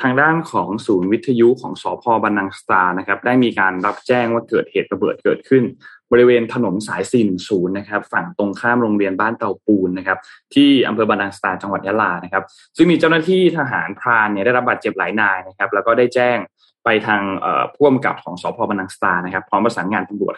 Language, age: Thai, 20-39